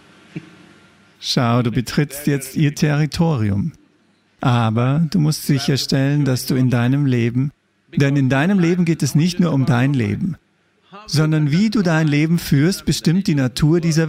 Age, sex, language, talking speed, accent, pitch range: 50-69, male, English, 155 wpm, German, 135-175 Hz